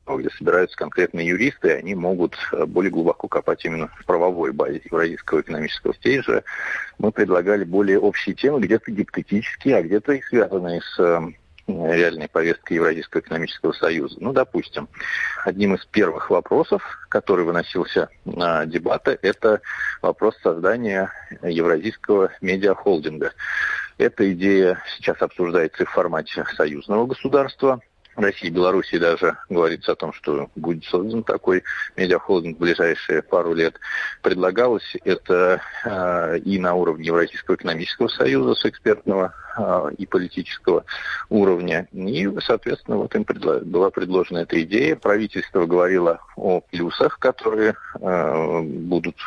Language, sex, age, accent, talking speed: Russian, male, 50-69, native, 125 wpm